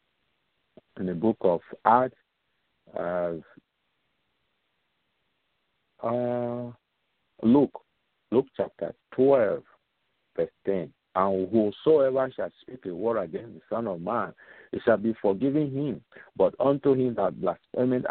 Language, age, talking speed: English, 50-69, 115 wpm